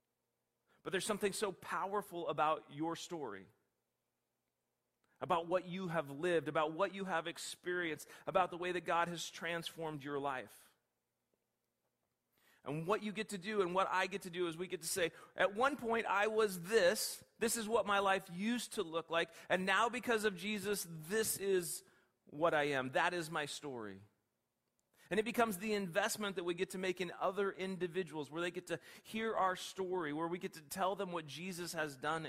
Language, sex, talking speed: English, male, 190 wpm